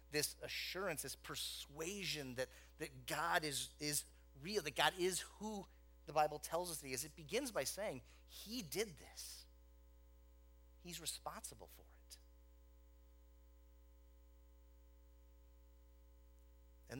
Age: 30-49